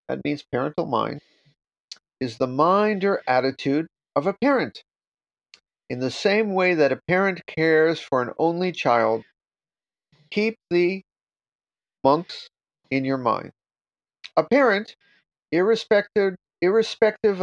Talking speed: 115 wpm